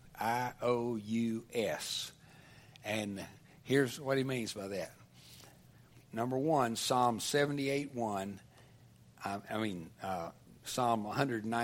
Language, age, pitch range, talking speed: English, 60-79, 105-130 Hz, 110 wpm